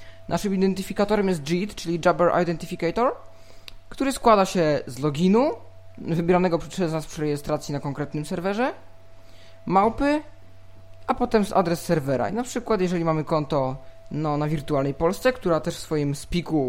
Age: 20-39